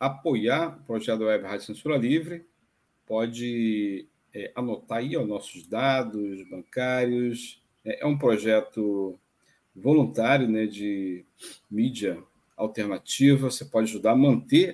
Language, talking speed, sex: Portuguese, 120 wpm, male